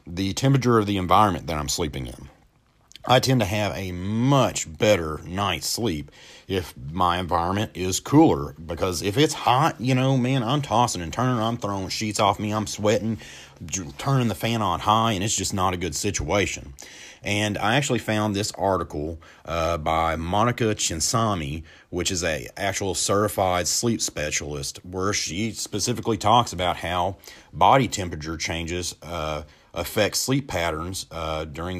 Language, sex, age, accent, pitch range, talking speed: English, male, 30-49, American, 85-115 Hz, 160 wpm